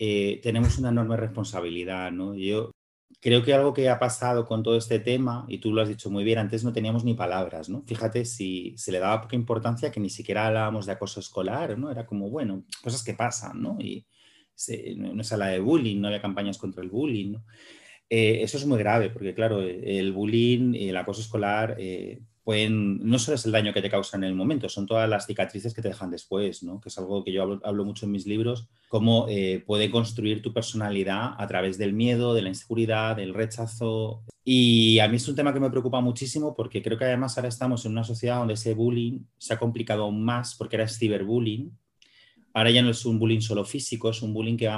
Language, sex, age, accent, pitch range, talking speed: Spanish, male, 30-49, Spanish, 105-120 Hz, 225 wpm